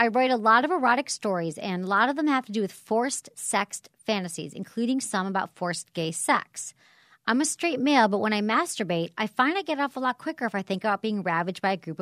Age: 40-59